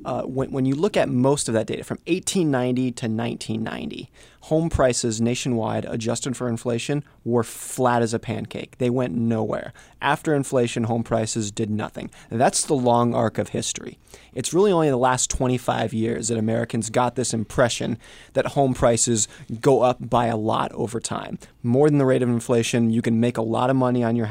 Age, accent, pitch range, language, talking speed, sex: 30-49, American, 115-130 Hz, English, 190 wpm, male